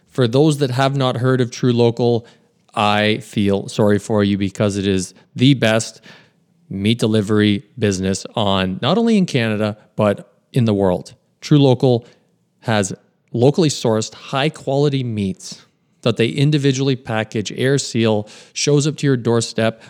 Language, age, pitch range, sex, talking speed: English, 30-49, 105-140 Hz, male, 150 wpm